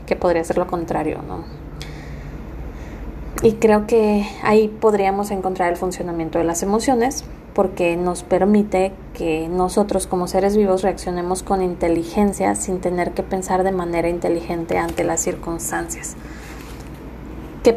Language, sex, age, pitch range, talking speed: Spanish, female, 20-39, 175-200 Hz, 130 wpm